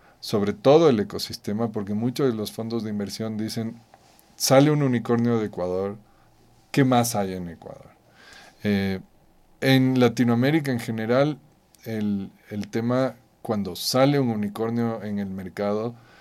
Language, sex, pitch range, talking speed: Spanish, male, 105-130 Hz, 135 wpm